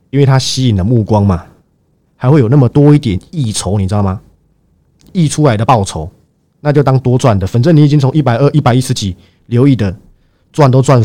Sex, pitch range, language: male, 100-150 Hz, Chinese